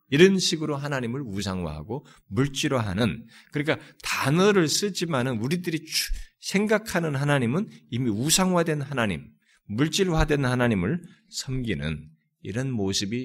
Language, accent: Korean, native